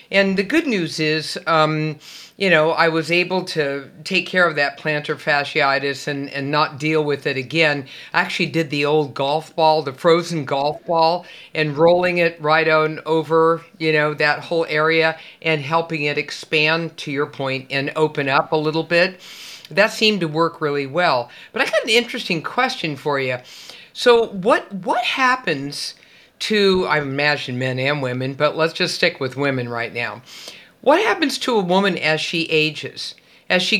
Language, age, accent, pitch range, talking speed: English, 50-69, American, 150-185 Hz, 180 wpm